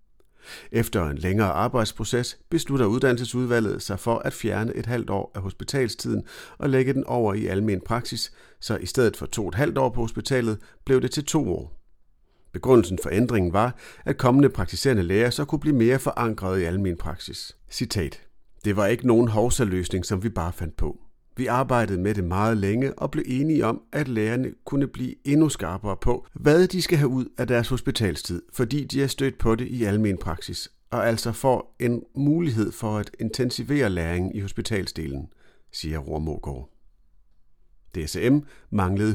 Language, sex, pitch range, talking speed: Danish, male, 100-130 Hz, 175 wpm